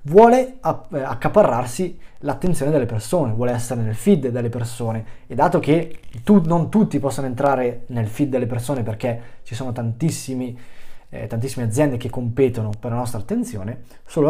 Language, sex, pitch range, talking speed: Italian, male, 120-150 Hz, 165 wpm